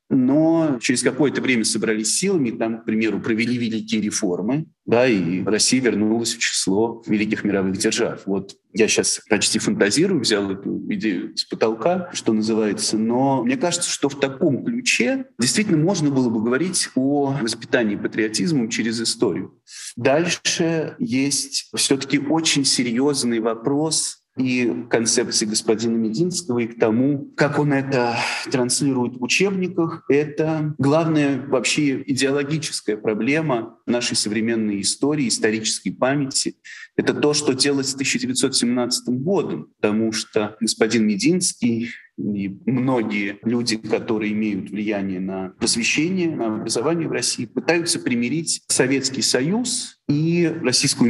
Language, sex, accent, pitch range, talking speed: Russian, male, native, 110-155 Hz, 125 wpm